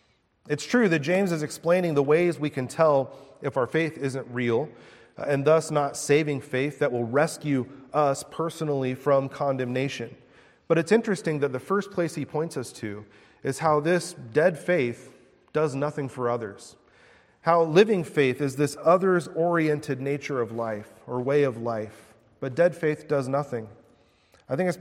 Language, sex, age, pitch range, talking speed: English, male, 30-49, 130-155 Hz, 165 wpm